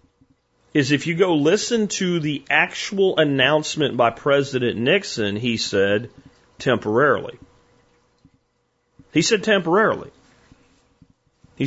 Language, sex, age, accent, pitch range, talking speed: English, male, 40-59, American, 115-160 Hz, 100 wpm